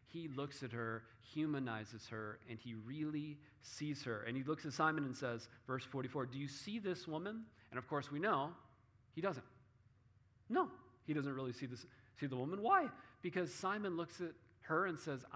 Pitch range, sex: 115-150 Hz, male